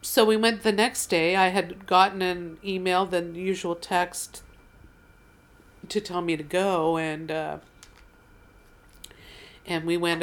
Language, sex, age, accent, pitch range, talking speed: English, female, 50-69, American, 155-190 Hz, 140 wpm